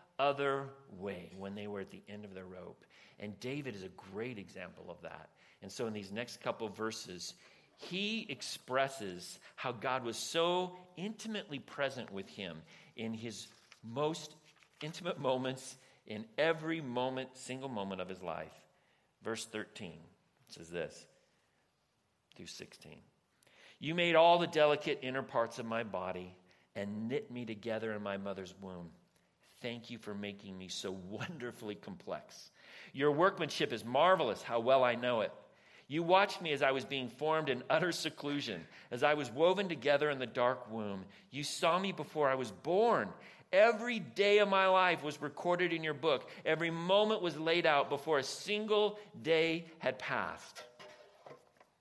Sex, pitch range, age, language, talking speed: male, 110-165 Hz, 50-69, English, 160 wpm